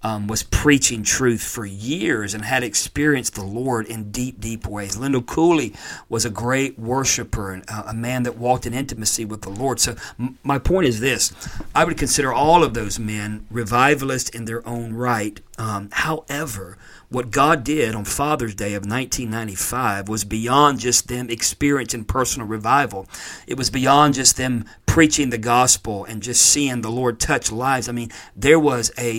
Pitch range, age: 110-135 Hz, 50-69